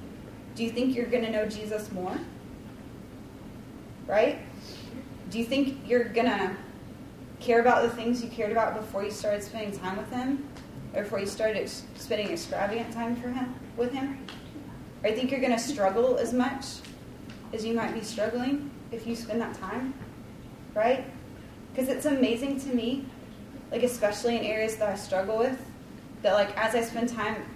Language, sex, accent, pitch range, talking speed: English, female, American, 215-260 Hz, 170 wpm